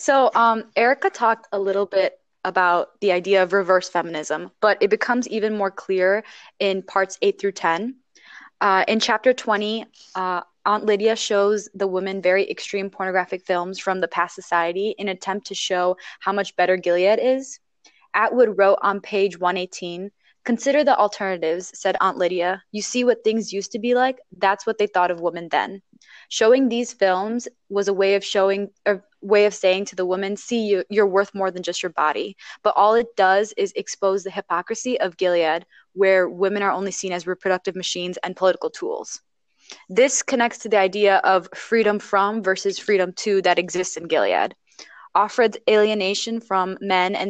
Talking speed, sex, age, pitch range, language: 180 wpm, female, 20-39, 185-220 Hz, English